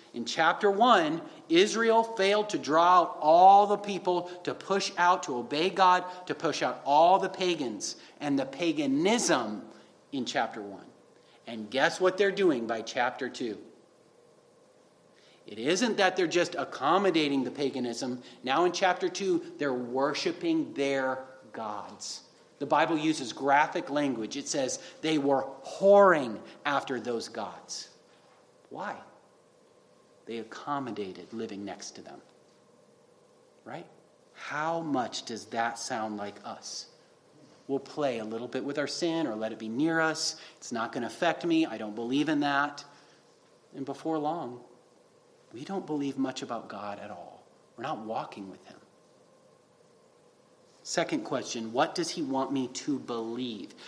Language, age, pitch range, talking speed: English, 40-59, 135-195 Hz, 145 wpm